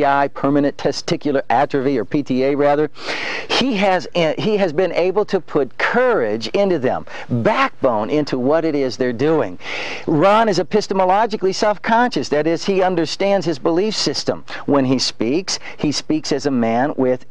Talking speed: 155 wpm